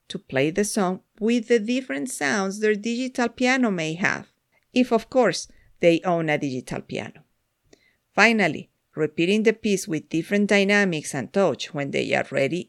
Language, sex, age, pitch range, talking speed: English, female, 50-69, 170-235 Hz, 160 wpm